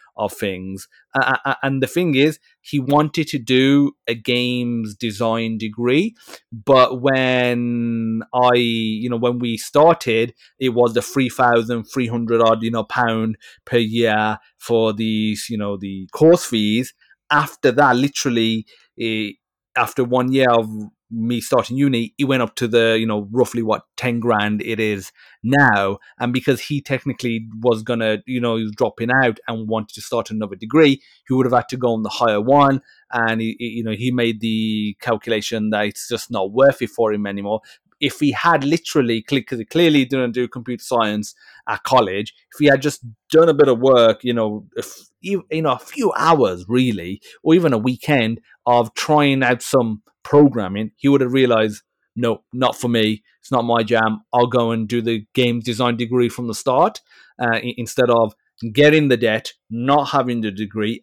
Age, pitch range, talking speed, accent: 30-49, 110-130 Hz, 185 wpm, British